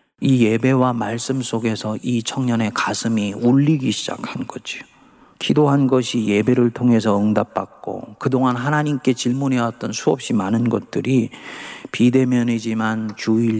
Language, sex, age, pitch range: Korean, male, 40-59, 110-135 Hz